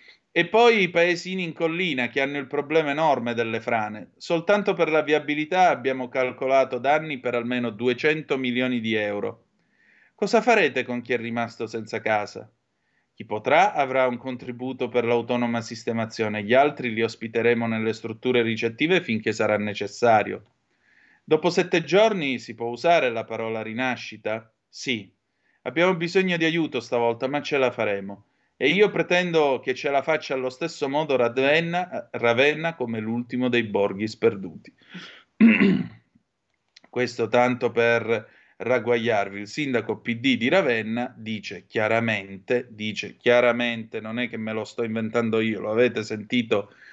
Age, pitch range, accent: 30-49, 115-155 Hz, native